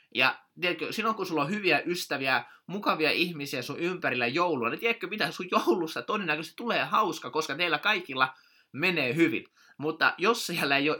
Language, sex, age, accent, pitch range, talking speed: Finnish, male, 20-39, native, 130-170 Hz, 165 wpm